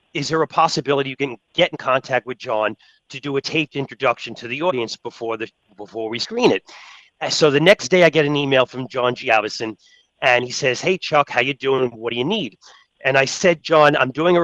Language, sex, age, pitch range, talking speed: English, male, 40-59, 125-160 Hz, 235 wpm